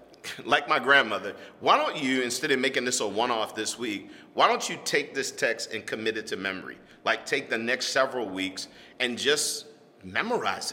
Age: 40-59